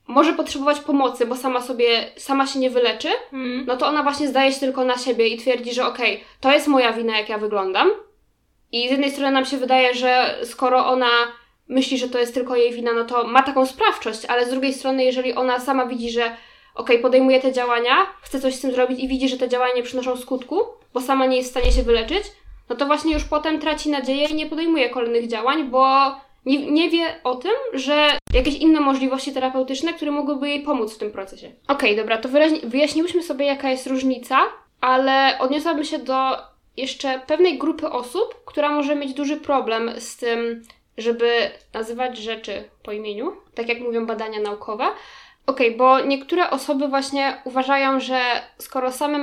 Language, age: Polish, 20-39